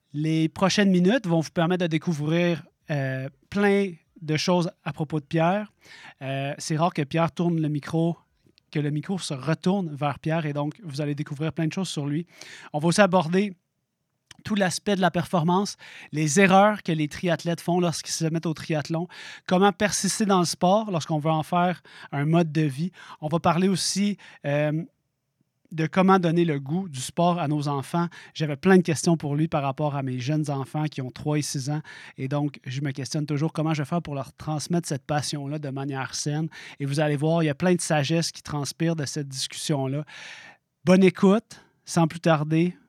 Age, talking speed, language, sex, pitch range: 30-49, 205 wpm, French, male, 145-180 Hz